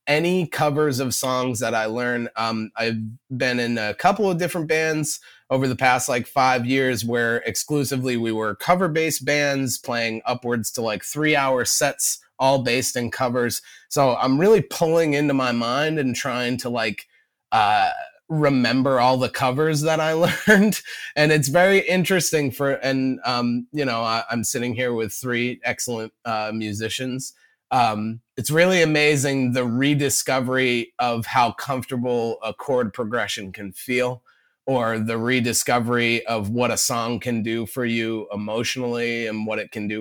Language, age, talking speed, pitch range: English, 30-49, 160 wpm, 115-140 Hz